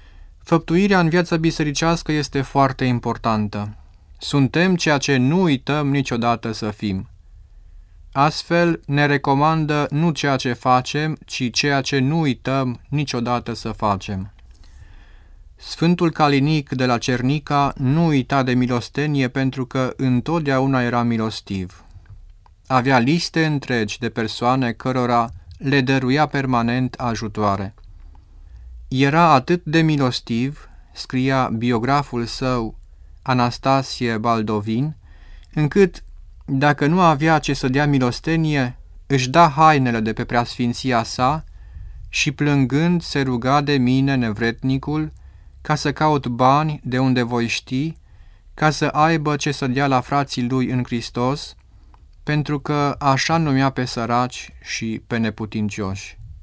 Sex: male